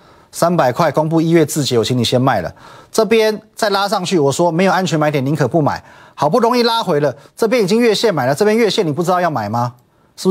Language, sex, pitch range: Chinese, male, 120-170 Hz